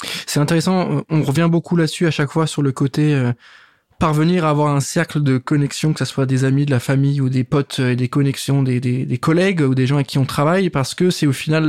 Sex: male